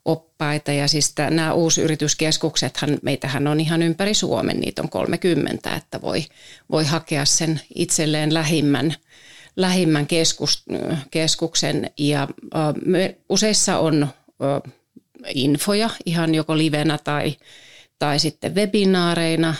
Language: Finnish